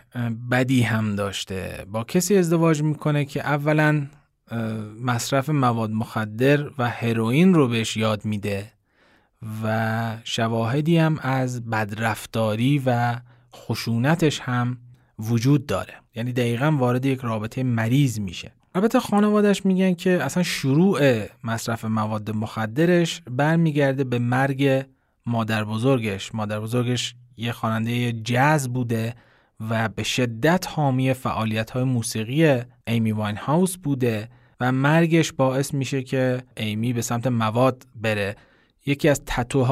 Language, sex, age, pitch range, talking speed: Persian, male, 30-49, 115-145 Hz, 120 wpm